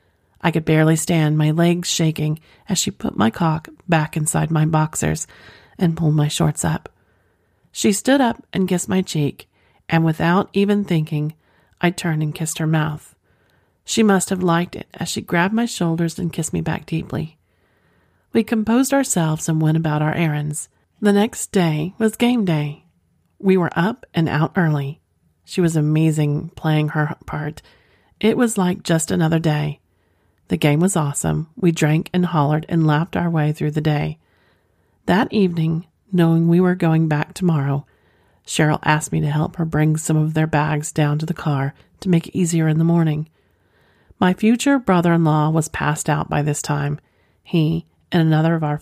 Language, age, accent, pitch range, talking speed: English, 40-59, American, 150-175 Hz, 175 wpm